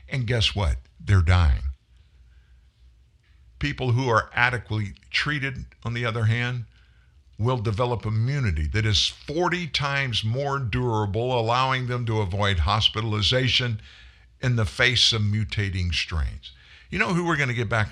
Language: English